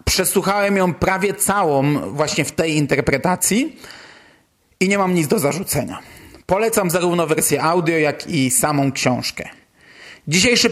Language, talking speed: Polish, 130 wpm